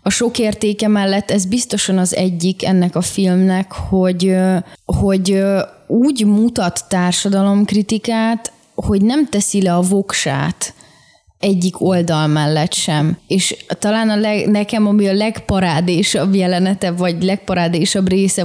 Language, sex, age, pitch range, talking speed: Hungarian, female, 20-39, 180-220 Hz, 125 wpm